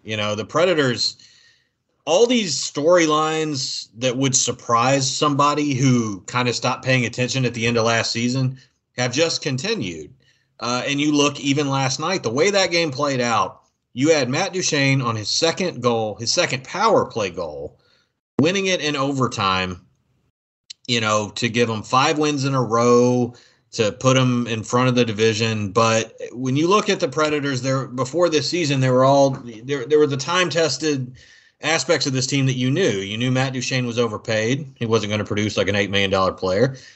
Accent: American